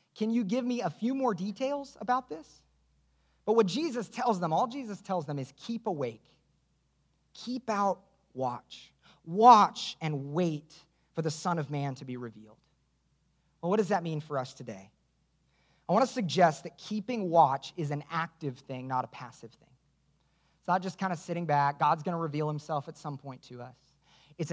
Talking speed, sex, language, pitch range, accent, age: 190 wpm, male, English, 145-200 Hz, American, 30-49